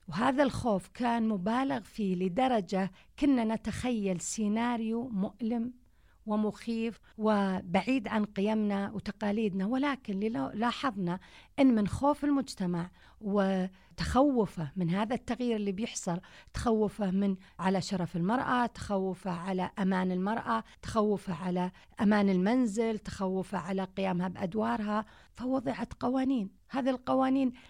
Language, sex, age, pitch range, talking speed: Arabic, female, 50-69, 195-245 Hz, 105 wpm